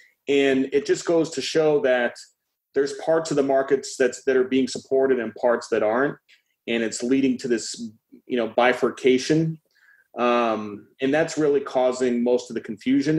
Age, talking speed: 30-49, 170 wpm